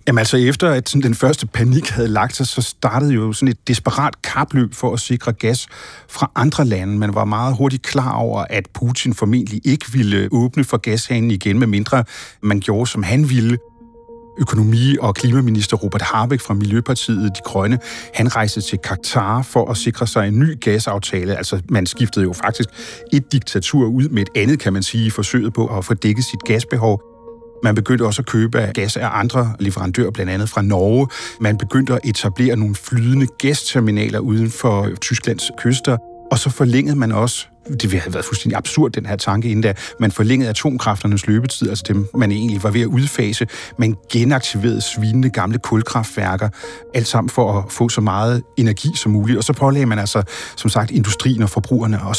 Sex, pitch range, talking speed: male, 105-125 Hz, 190 wpm